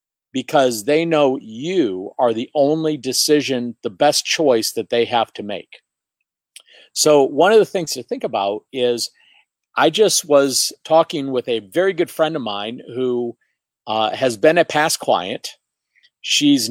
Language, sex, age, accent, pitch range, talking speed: English, male, 50-69, American, 125-180 Hz, 160 wpm